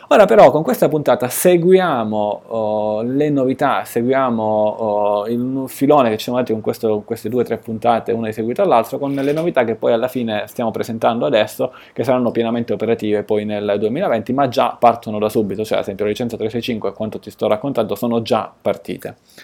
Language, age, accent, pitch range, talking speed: Italian, 20-39, native, 110-135 Hz, 200 wpm